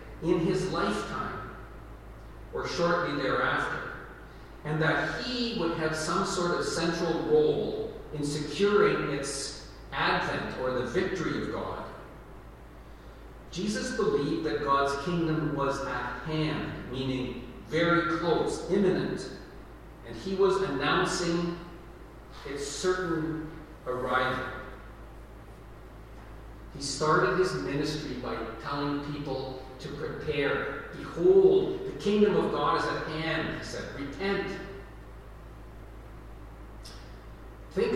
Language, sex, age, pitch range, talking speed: English, male, 40-59, 150-195 Hz, 105 wpm